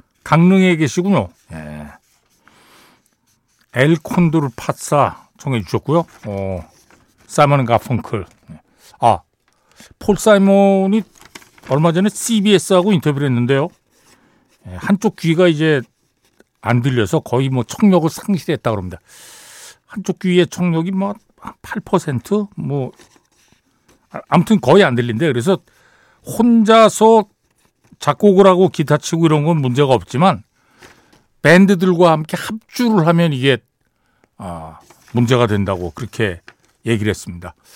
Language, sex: Korean, male